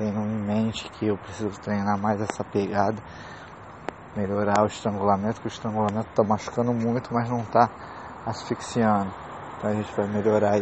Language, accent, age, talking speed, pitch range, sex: English, Brazilian, 20-39, 160 wpm, 105-115 Hz, male